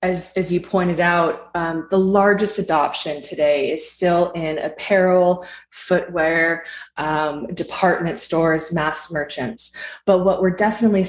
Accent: American